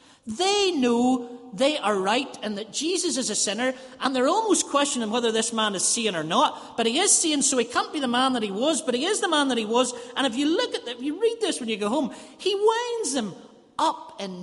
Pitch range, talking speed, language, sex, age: 175-275 Hz, 260 wpm, English, male, 40-59